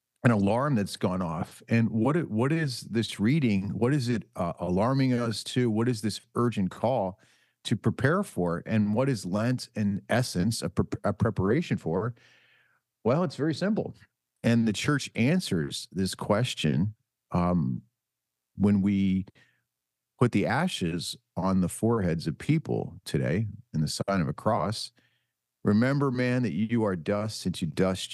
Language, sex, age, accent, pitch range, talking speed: English, male, 40-59, American, 90-125 Hz, 160 wpm